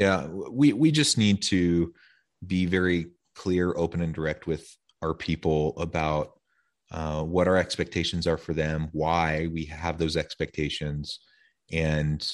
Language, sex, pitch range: English, male, 75-85 Hz